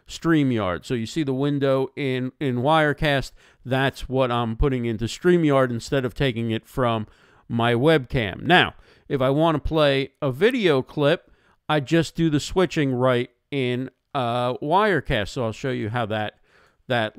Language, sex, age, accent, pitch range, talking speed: English, male, 50-69, American, 120-155 Hz, 165 wpm